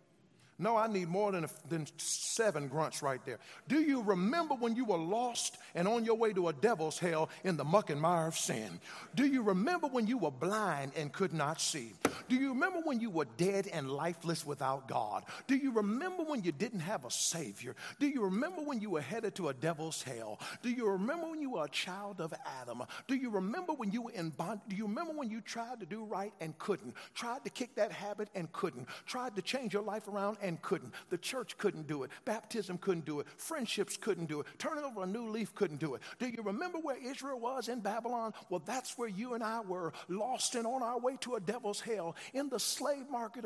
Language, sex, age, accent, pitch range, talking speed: English, male, 50-69, American, 180-240 Hz, 230 wpm